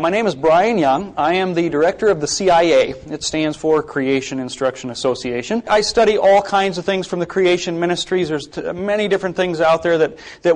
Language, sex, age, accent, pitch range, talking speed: English, male, 30-49, American, 145-180 Hz, 205 wpm